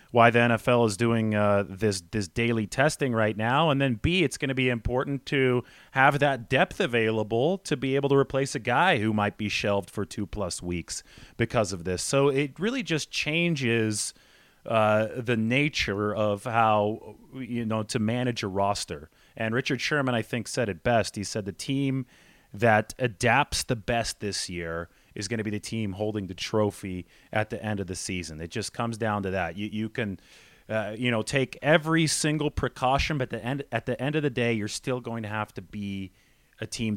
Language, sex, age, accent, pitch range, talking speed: English, male, 30-49, American, 110-140 Hz, 205 wpm